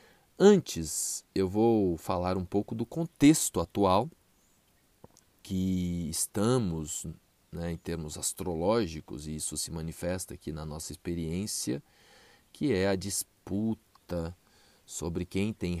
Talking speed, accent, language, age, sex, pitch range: 115 wpm, Brazilian, Portuguese, 40-59, male, 85-100 Hz